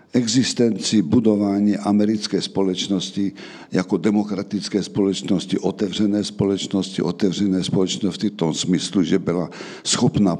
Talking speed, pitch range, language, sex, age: 100 wpm, 95-110 Hz, Slovak, male, 60-79